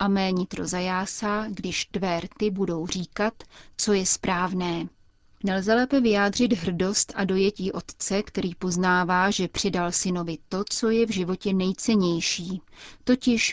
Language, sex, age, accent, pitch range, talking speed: Czech, female, 30-49, native, 175-210 Hz, 130 wpm